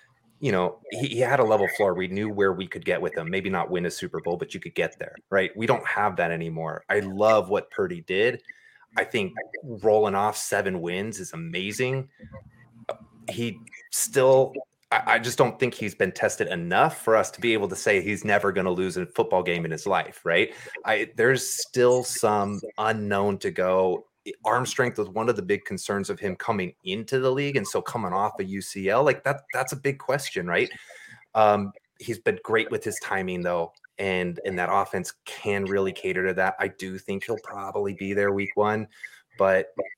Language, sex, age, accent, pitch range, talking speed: English, male, 30-49, American, 95-125 Hz, 205 wpm